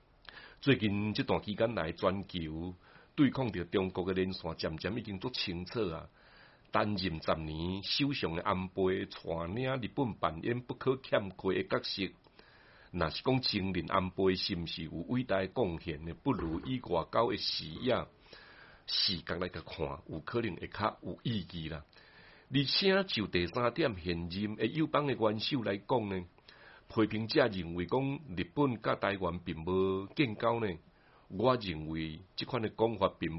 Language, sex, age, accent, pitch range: Chinese, male, 60-79, Malaysian, 90-125 Hz